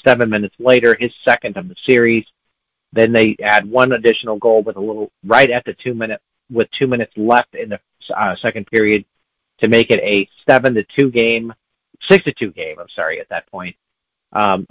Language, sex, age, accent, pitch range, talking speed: English, male, 50-69, American, 110-130 Hz, 200 wpm